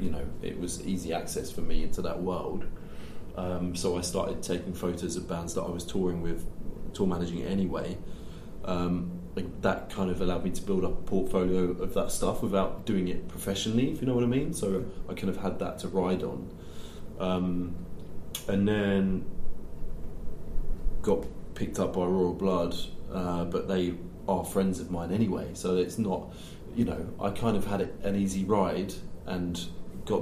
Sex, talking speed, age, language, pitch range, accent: male, 185 wpm, 20-39, English, 90-95 Hz, British